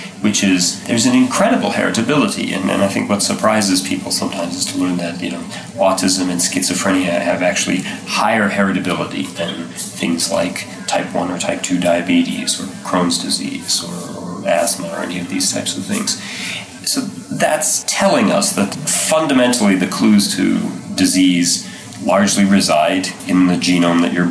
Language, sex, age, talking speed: English, male, 30-49, 160 wpm